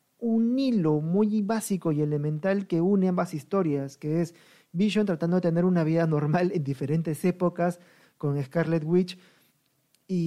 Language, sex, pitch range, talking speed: Spanish, male, 150-180 Hz, 150 wpm